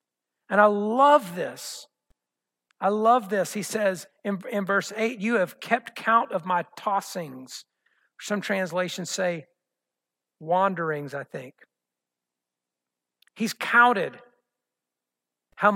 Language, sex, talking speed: English, male, 110 wpm